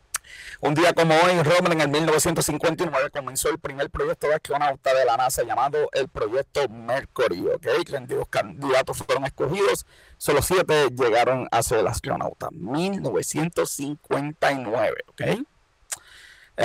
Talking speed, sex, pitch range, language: 125 wpm, male, 135-180 Hz, Spanish